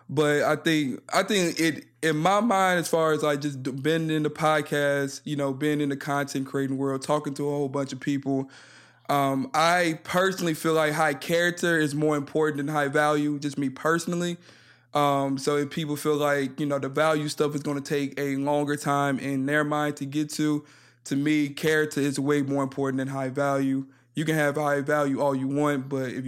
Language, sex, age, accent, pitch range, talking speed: English, male, 20-39, American, 140-155 Hz, 215 wpm